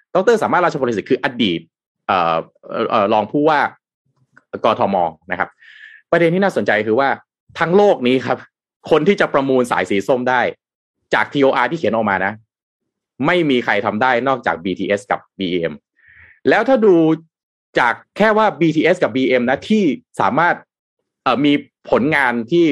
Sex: male